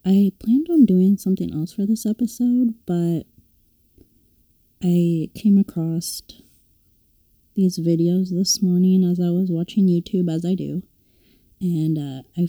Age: 20-39